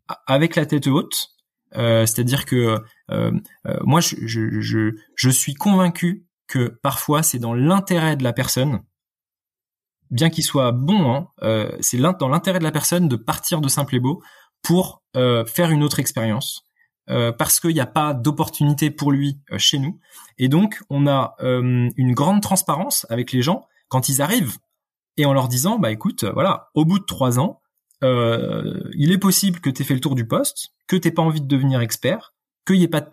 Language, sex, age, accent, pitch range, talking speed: French, male, 20-39, French, 125-165 Hz, 200 wpm